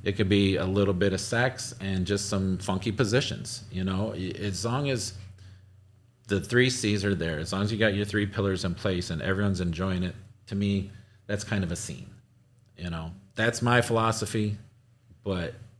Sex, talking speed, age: male, 190 wpm, 40-59